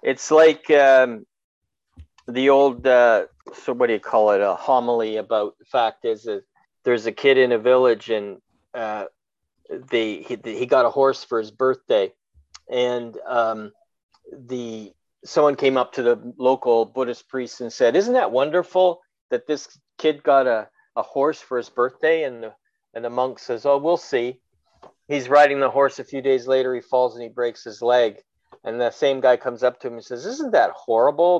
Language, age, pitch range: English, 40-59, 120-155 Hz